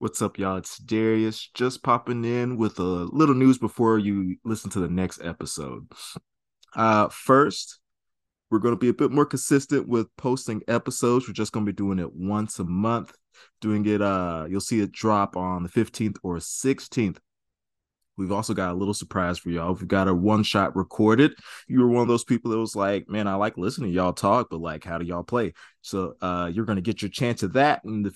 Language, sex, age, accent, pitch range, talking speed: English, male, 20-39, American, 95-115 Hz, 210 wpm